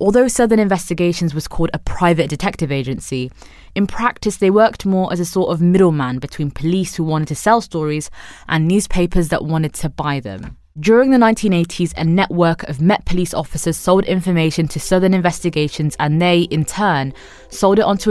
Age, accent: 20-39, British